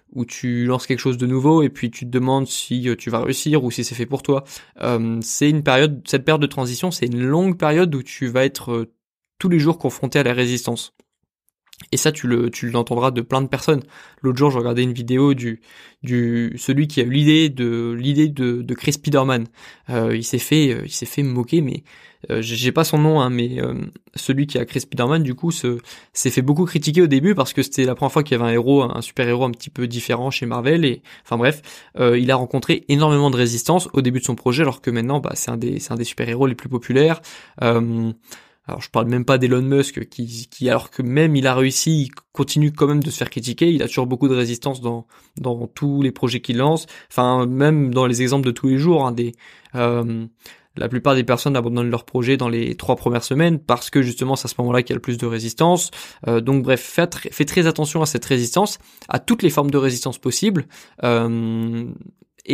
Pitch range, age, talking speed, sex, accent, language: 120-150 Hz, 20-39, 240 wpm, male, French, French